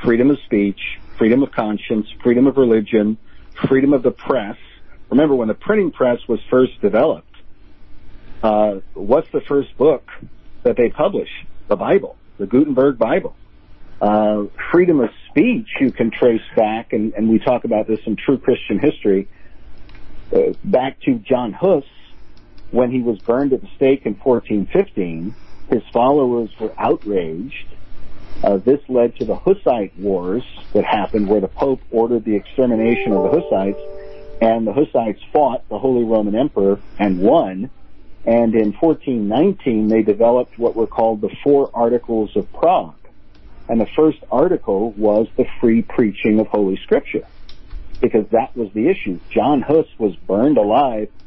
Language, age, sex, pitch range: English, 50-69, male, 105-125 Hz